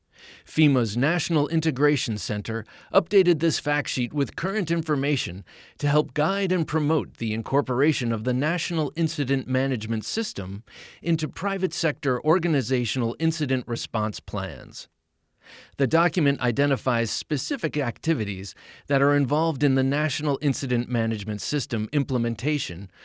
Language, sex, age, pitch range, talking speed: English, male, 30-49, 115-155 Hz, 120 wpm